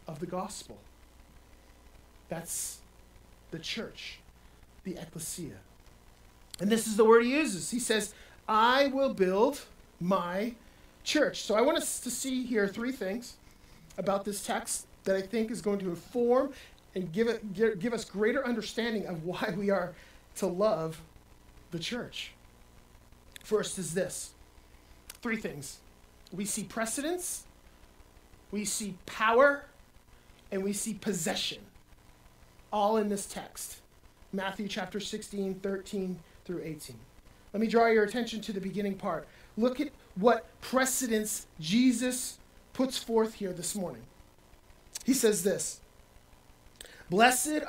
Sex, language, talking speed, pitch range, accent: male, English, 130 wpm, 180-230 Hz, American